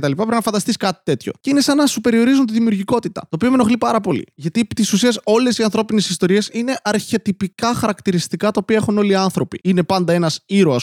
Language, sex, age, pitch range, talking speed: Greek, male, 20-39, 165-220 Hz, 235 wpm